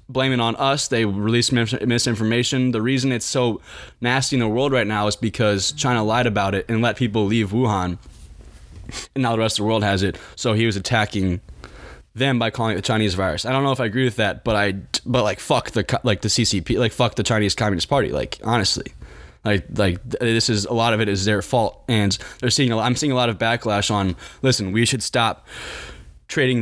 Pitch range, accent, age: 105-125 Hz, American, 10-29